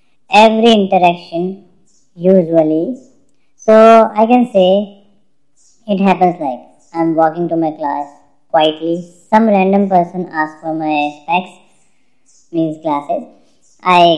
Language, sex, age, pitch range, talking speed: Hindi, male, 20-39, 170-240 Hz, 110 wpm